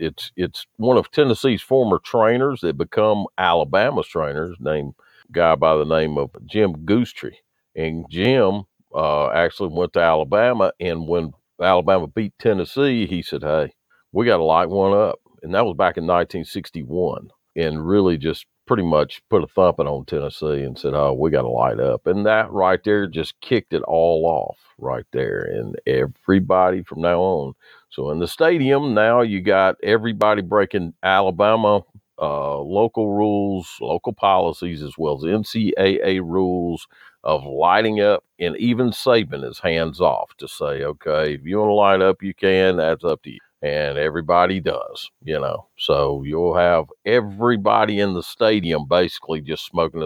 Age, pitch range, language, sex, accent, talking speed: 50-69, 85-105 Hz, English, male, American, 165 wpm